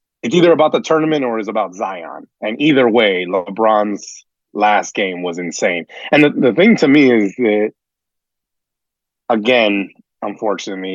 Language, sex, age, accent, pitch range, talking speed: English, male, 30-49, American, 100-120 Hz, 150 wpm